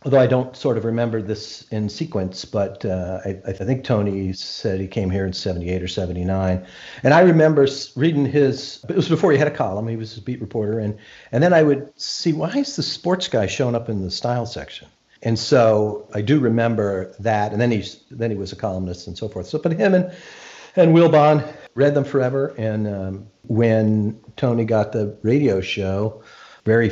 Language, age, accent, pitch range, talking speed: English, 50-69, American, 95-130 Hz, 205 wpm